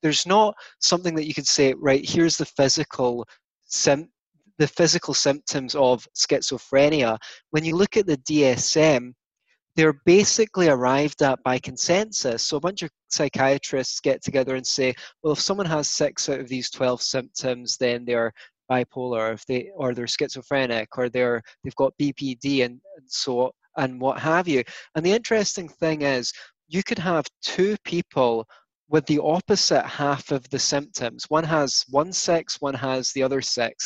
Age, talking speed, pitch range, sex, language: 20-39, 170 wpm, 130-160 Hz, male, English